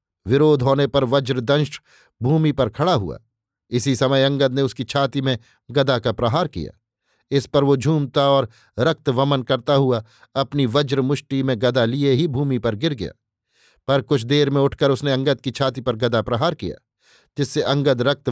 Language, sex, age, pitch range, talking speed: Hindi, male, 50-69, 125-145 Hz, 180 wpm